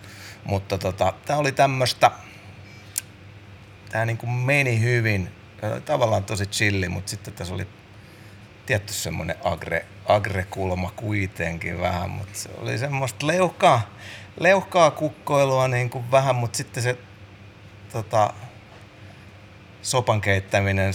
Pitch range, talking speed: 100-105 Hz, 110 wpm